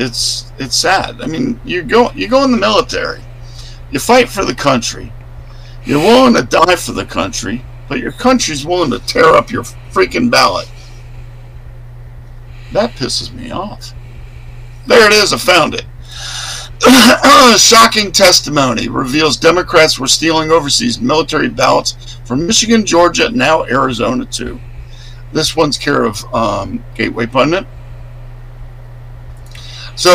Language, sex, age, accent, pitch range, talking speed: English, male, 50-69, American, 120-145 Hz, 135 wpm